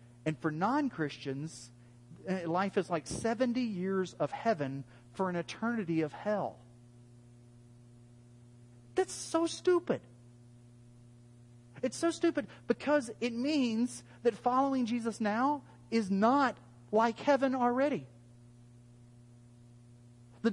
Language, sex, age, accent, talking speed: English, male, 40-59, American, 100 wpm